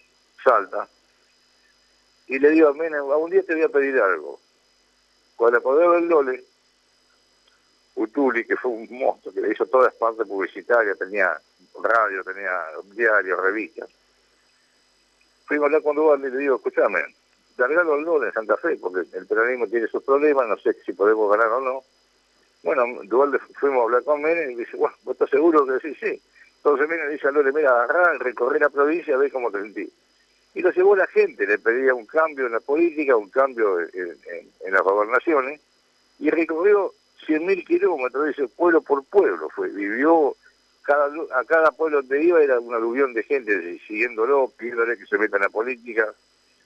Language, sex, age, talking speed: Spanish, male, 60-79, 185 wpm